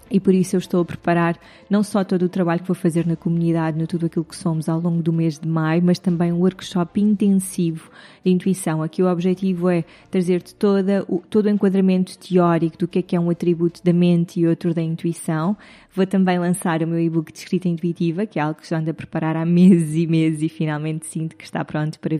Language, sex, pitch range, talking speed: Portuguese, female, 165-185 Hz, 235 wpm